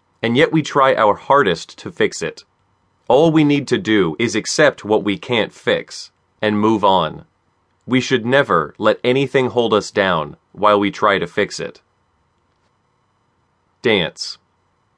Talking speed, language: 150 wpm, English